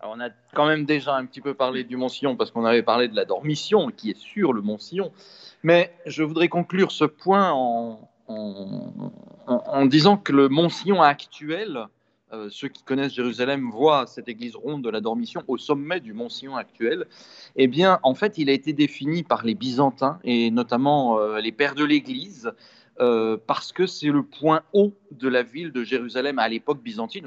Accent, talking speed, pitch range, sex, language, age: French, 195 wpm, 120-180 Hz, male, French, 40-59